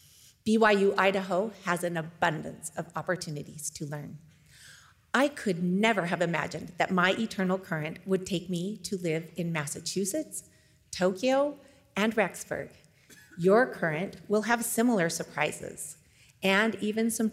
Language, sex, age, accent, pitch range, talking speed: English, female, 40-59, American, 165-205 Hz, 125 wpm